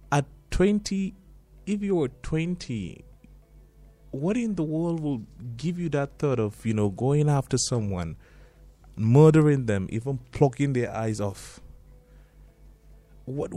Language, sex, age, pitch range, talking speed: English, male, 30-49, 120-165 Hz, 125 wpm